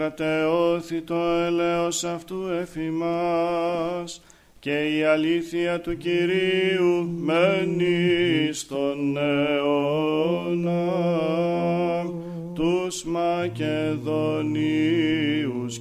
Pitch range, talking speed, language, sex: 150-180 Hz, 55 wpm, Greek, male